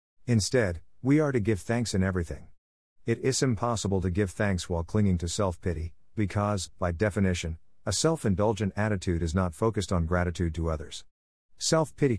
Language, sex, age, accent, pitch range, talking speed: English, male, 50-69, American, 90-110 Hz, 160 wpm